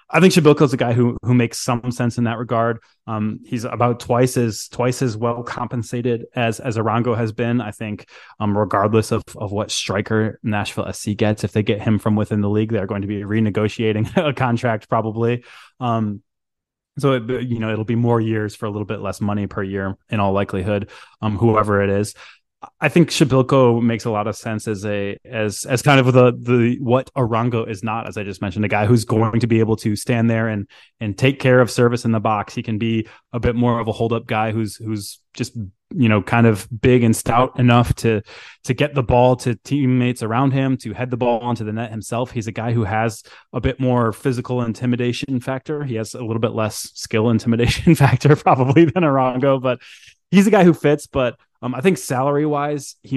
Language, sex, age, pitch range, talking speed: English, male, 20-39, 110-125 Hz, 220 wpm